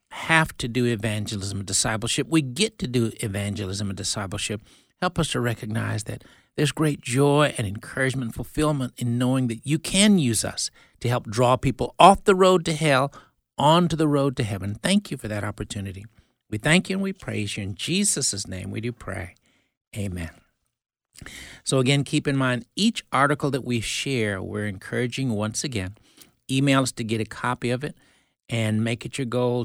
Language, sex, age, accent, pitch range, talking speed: English, male, 60-79, American, 110-155 Hz, 185 wpm